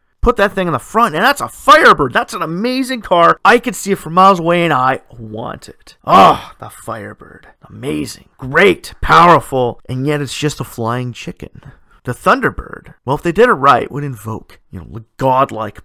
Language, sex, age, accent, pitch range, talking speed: English, male, 30-49, American, 130-180 Hz, 200 wpm